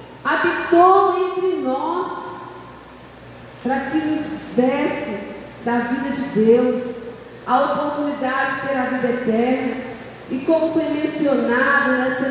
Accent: Brazilian